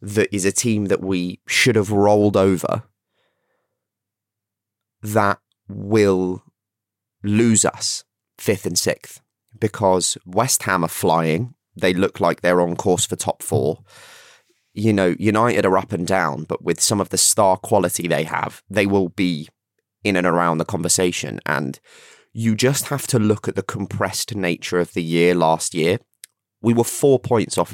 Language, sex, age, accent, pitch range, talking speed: English, male, 20-39, British, 90-110 Hz, 160 wpm